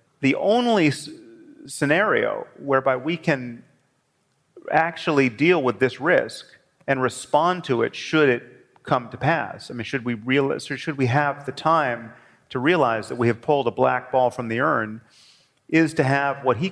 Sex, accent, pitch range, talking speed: male, American, 115-140 Hz, 170 wpm